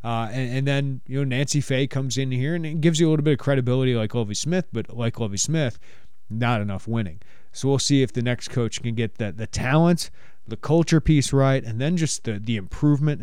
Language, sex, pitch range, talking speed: English, male, 115-150 Hz, 235 wpm